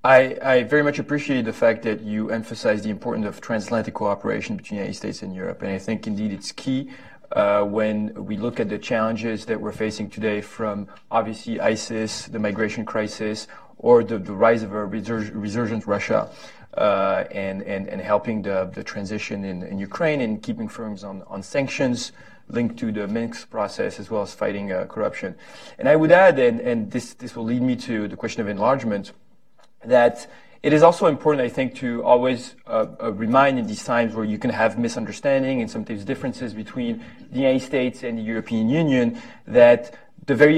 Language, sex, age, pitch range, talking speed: English, male, 30-49, 110-145 Hz, 190 wpm